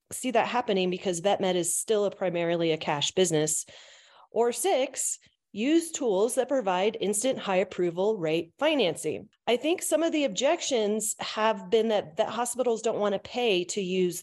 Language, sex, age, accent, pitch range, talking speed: English, female, 30-49, American, 185-245 Hz, 170 wpm